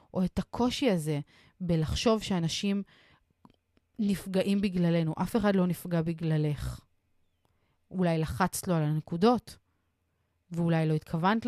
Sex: female